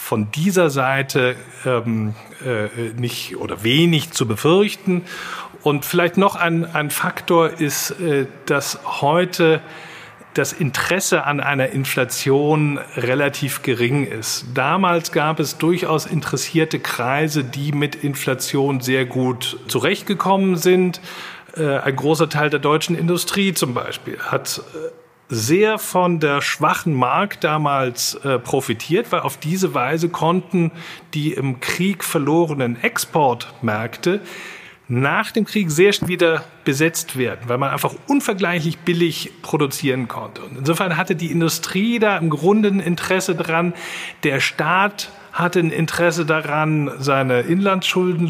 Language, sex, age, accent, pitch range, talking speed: German, male, 40-59, German, 140-175 Hz, 130 wpm